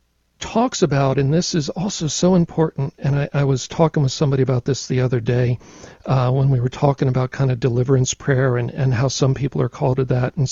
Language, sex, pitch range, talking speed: English, male, 130-160 Hz, 230 wpm